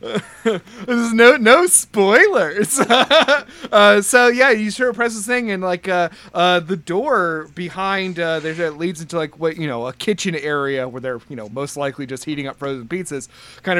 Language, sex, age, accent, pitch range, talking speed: English, male, 30-49, American, 155-205 Hz, 195 wpm